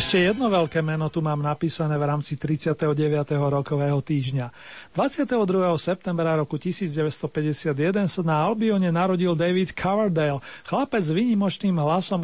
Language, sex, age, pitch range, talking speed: Slovak, male, 40-59, 155-195 Hz, 125 wpm